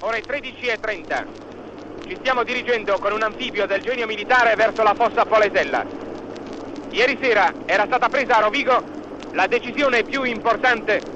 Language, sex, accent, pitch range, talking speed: Italian, male, native, 225-270 Hz, 140 wpm